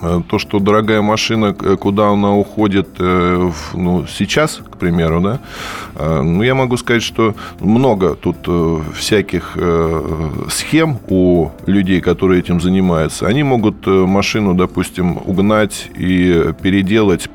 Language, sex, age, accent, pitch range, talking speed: Russian, male, 20-39, native, 85-100 Hz, 115 wpm